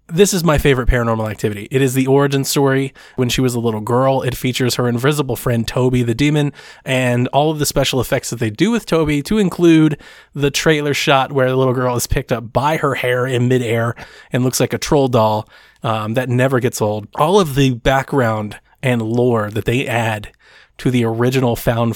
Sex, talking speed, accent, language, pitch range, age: male, 210 wpm, American, English, 120-150 Hz, 20-39